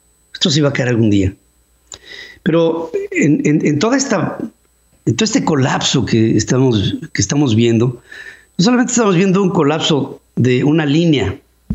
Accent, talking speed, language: Mexican, 160 wpm, Spanish